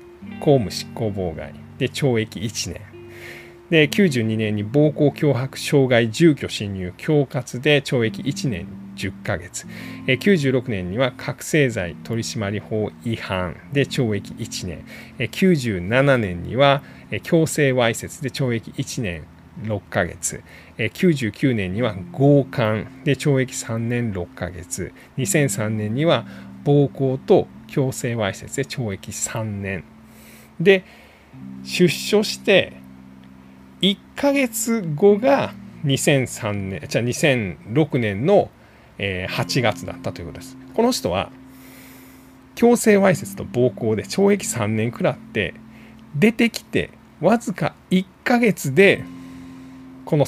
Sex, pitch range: male, 105-150 Hz